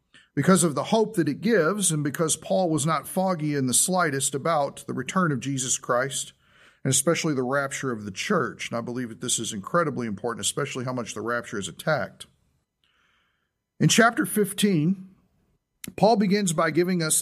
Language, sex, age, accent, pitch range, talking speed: English, male, 40-59, American, 150-205 Hz, 180 wpm